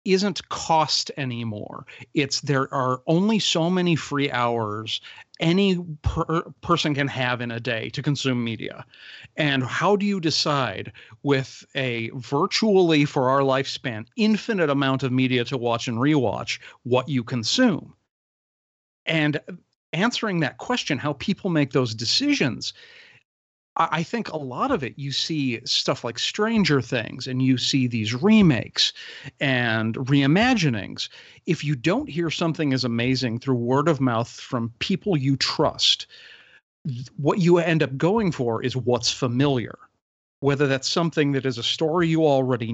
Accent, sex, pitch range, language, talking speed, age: American, male, 125-165 Hz, English, 145 wpm, 40-59